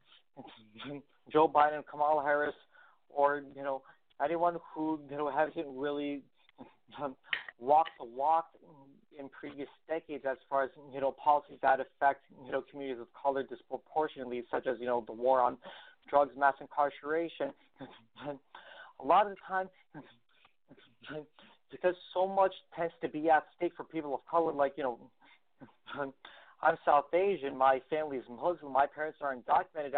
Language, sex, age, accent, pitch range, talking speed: English, male, 40-59, American, 140-165 Hz, 150 wpm